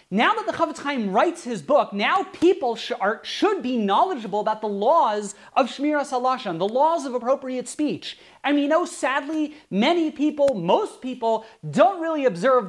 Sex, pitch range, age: male, 235-320 Hz, 30-49